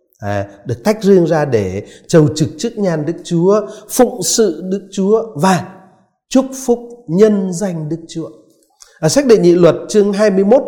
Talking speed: 170 wpm